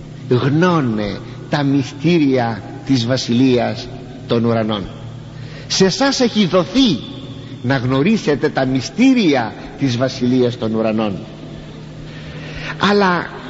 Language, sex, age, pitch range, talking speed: Greek, male, 50-69, 135-215 Hz, 90 wpm